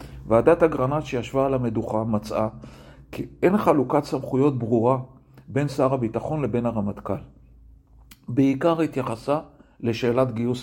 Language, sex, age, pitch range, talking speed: Hebrew, male, 50-69, 115-145 Hz, 115 wpm